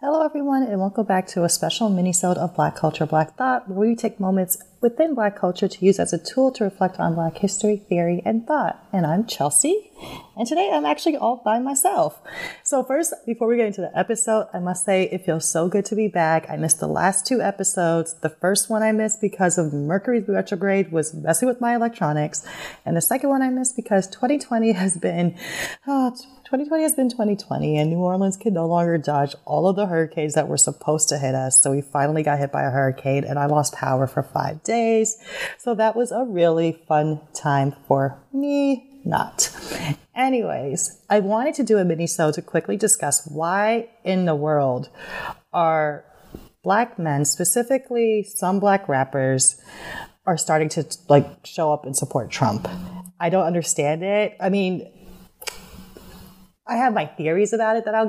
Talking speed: 190 wpm